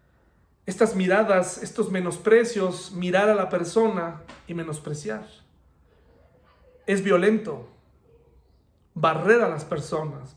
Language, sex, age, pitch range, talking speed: Spanish, male, 40-59, 170-215 Hz, 95 wpm